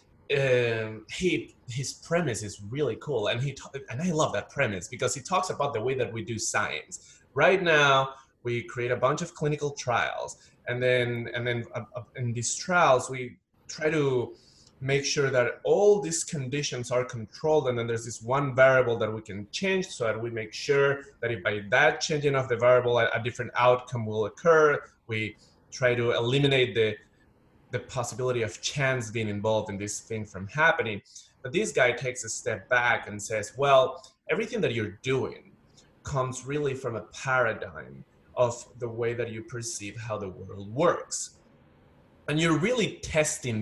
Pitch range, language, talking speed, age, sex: 115-140 Hz, English, 175 wpm, 20-39, male